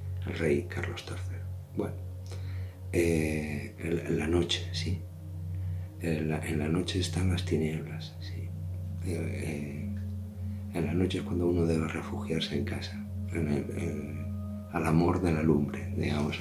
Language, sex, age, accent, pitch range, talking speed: Spanish, male, 50-69, Spanish, 75-95 Hz, 150 wpm